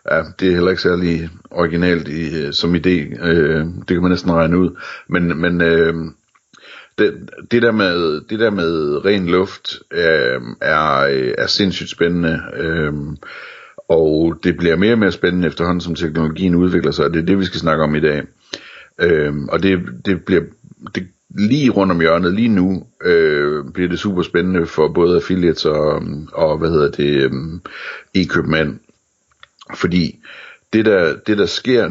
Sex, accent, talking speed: male, native, 165 wpm